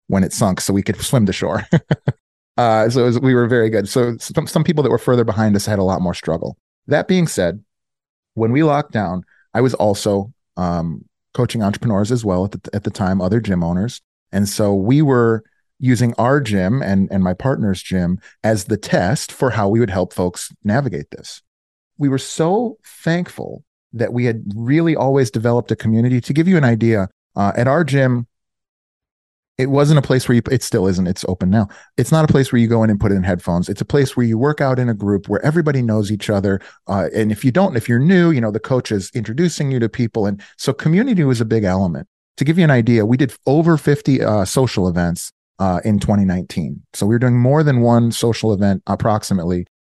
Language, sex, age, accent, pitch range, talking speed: English, male, 30-49, American, 100-130 Hz, 225 wpm